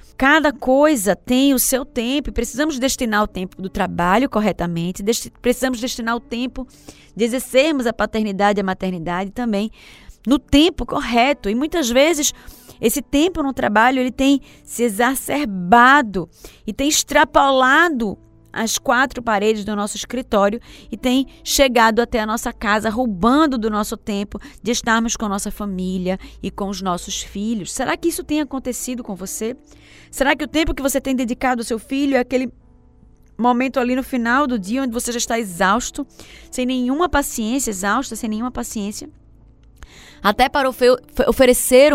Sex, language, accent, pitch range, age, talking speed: female, Portuguese, Brazilian, 205-255 Hz, 20-39, 160 wpm